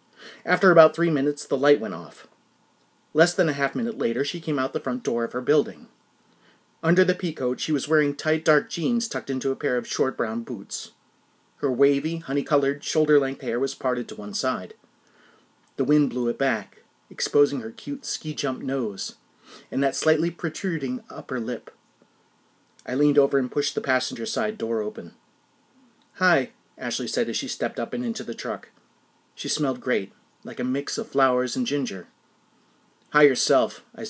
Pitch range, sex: 135-185 Hz, male